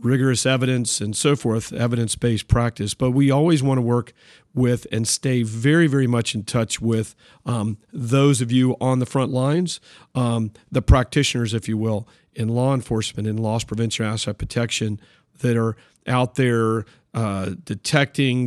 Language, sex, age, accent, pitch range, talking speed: English, male, 50-69, American, 115-135 Hz, 160 wpm